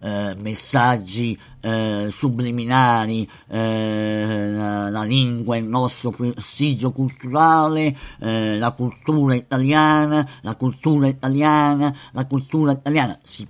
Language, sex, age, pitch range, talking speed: Italian, male, 50-69, 105-135 Hz, 100 wpm